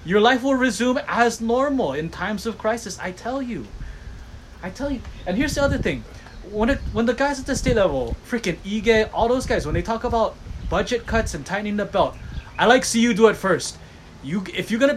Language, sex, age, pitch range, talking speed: English, male, 20-39, 175-245 Hz, 225 wpm